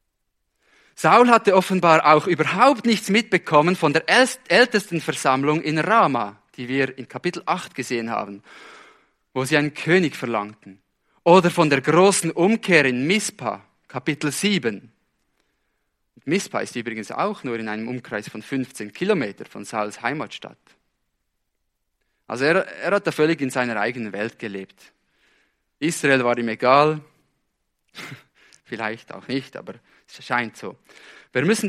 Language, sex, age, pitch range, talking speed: English, male, 20-39, 120-175 Hz, 135 wpm